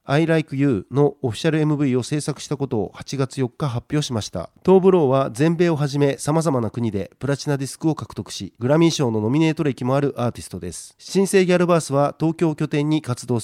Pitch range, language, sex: 125-155 Hz, Japanese, male